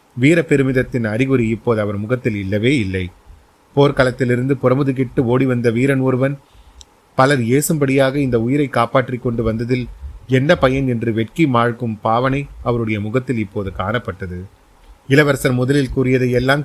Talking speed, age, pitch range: 125 wpm, 30-49, 115-135 Hz